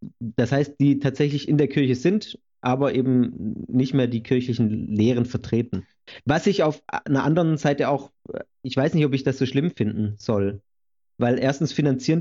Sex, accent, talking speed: male, German, 175 wpm